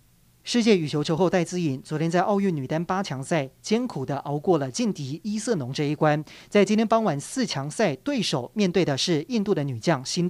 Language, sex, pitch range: Chinese, male, 145-195 Hz